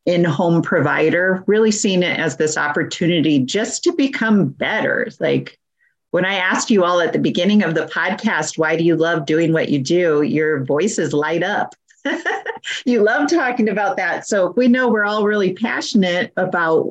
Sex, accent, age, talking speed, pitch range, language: female, American, 40-59, 175 wpm, 165-235 Hz, English